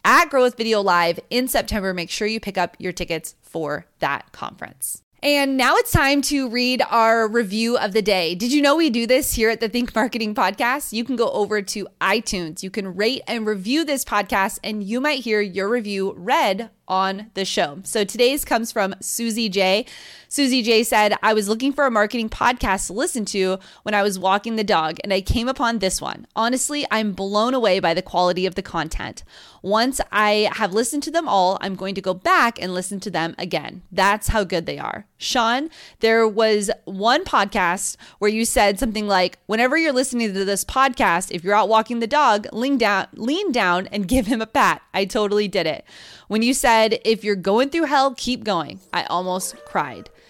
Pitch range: 195-245 Hz